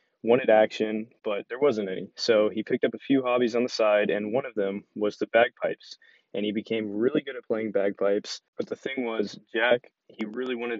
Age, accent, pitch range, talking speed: 20-39, American, 105-115 Hz, 215 wpm